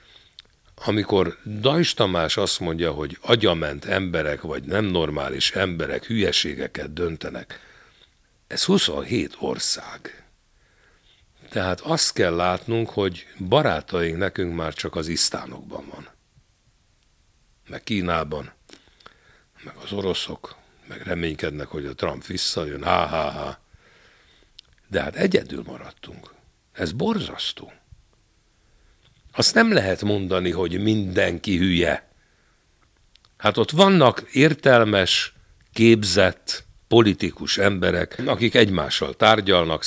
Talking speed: 100 wpm